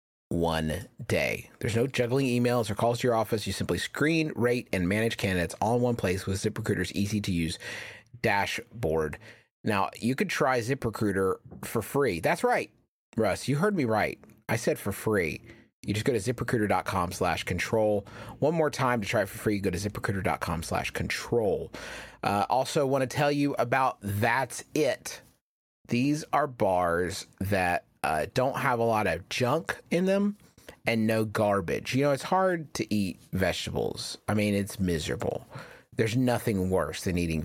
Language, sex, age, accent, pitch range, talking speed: English, male, 30-49, American, 100-125 Hz, 170 wpm